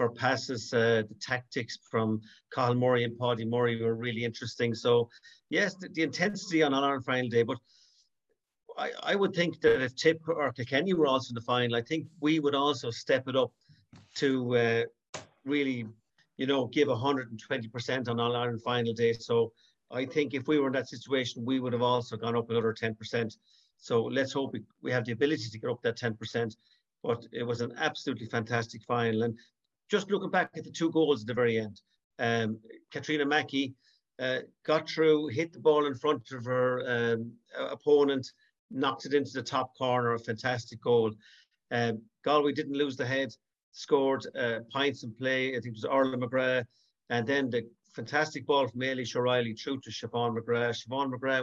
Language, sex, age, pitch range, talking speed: English, male, 50-69, 115-140 Hz, 195 wpm